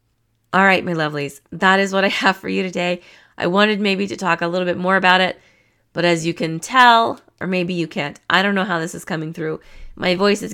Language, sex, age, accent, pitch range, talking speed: English, female, 20-39, American, 155-195 Hz, 245 wpm